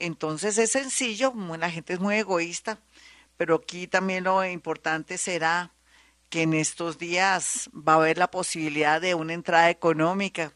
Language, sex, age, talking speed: Spanish, female, 50-69, 155 wpm